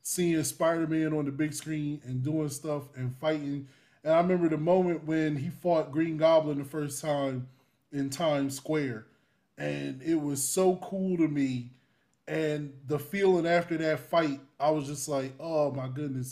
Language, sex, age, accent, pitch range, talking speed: English, male, 20-39, American, 145-175 Hz, 175 wpm